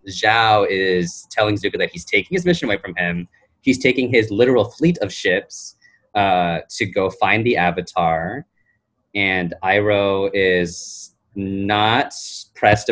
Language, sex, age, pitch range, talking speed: English, male, 20-39, 90-115 Hz, 140 wpm